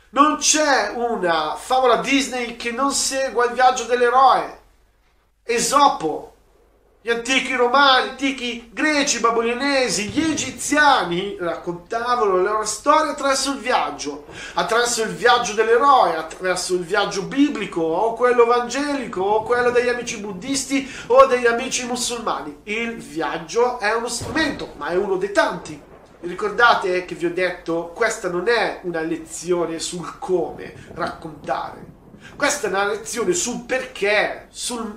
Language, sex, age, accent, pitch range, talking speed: Italian, male, 40-59, native, 195-265 Hz, 135 wpm